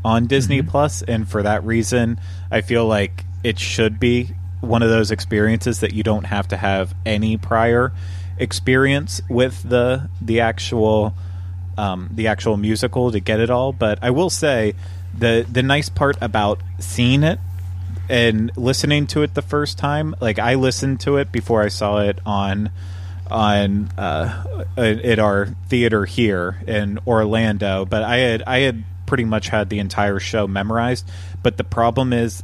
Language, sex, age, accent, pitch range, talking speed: English, male, 30-49, American, 95-115 Hz, 165 wpm